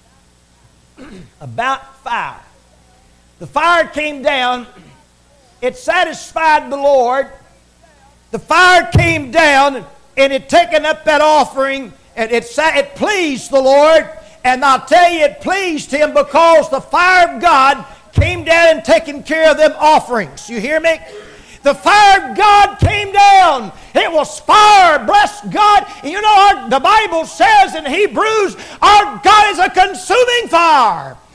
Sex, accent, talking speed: male, American, 140 wpm